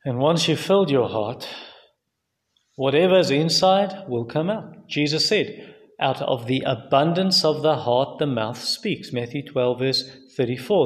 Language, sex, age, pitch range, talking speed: English, male, 30-49, 120-150 Hz, 155 wpm